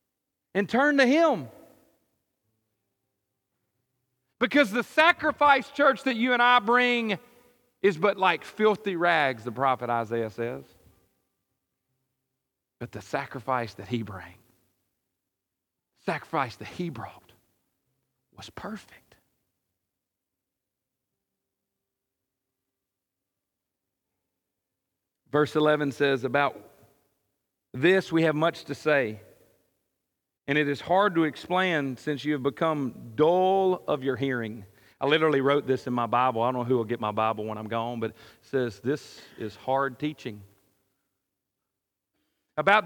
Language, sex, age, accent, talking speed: English, male, 40-59, American, 120 wpm